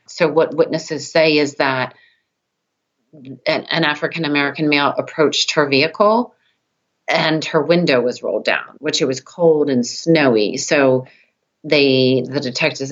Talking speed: 135 wpm